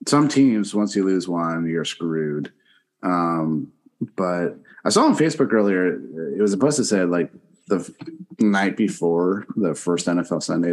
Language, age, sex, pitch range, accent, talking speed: English, 30-49, male, 90-120 Hz, American, 160 wpm